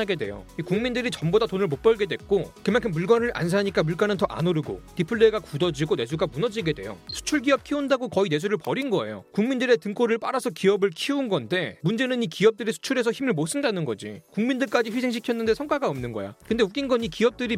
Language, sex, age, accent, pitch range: Korean, male, 30-49, native, 170-240 Hz